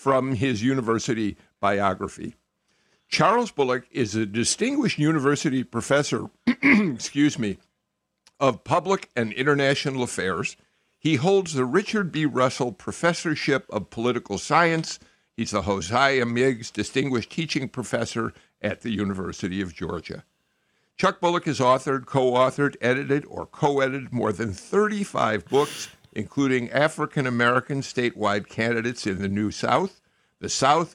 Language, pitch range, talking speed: English, 110-140 Hz, 120 wpm